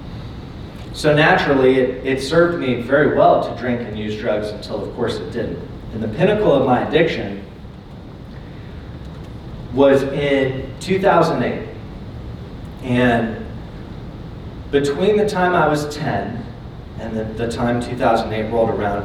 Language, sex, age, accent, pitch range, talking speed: English, male, 40-59, American, 115-145 Hz, 130 wpm